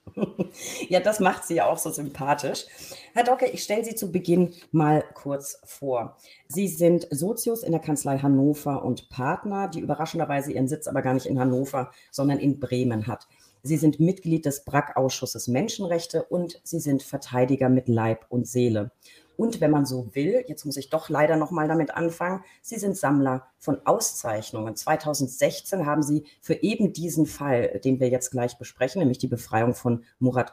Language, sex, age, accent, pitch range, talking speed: German, female, 40-59, German, 125-165 Hz, 175 wpm